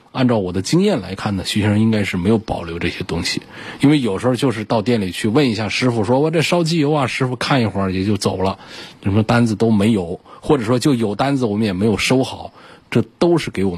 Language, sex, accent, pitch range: Chinese, male, native, 95-120 Hz